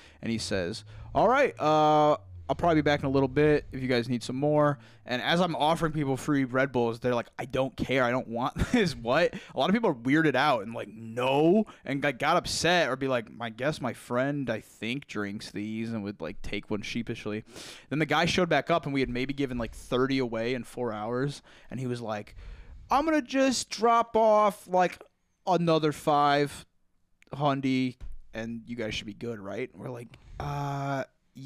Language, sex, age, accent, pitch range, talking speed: English, male, 20-39, American, 110-140 Hz, 210 wpm